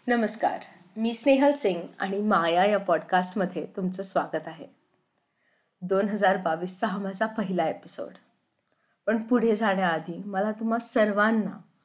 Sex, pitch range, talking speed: female, 190-235 Hz, 95 wpm